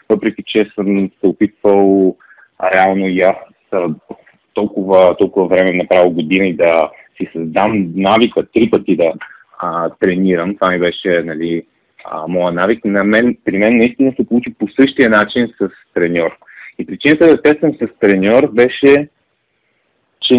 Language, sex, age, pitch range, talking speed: Bulgarian, male, 30-49, 100-130 Hz, 150 wpm